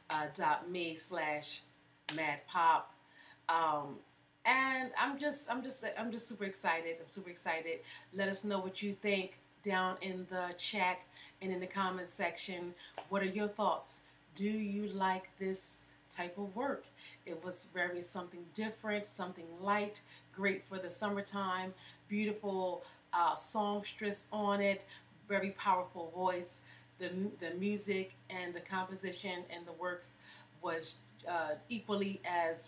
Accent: American